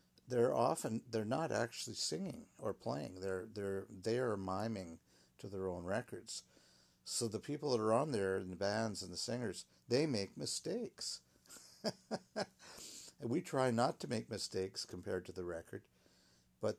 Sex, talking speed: male, 160 wpm